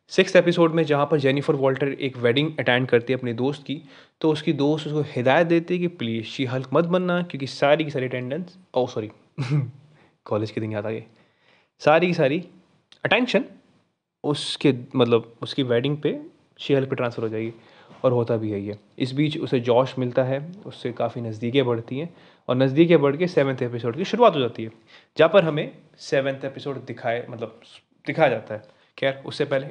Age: 20-39